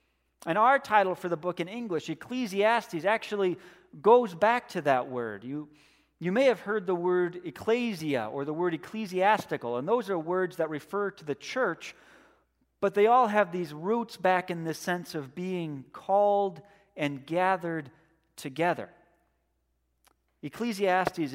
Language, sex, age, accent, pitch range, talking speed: English, male, 40-59, American, 140-190 Hz, 150 wpm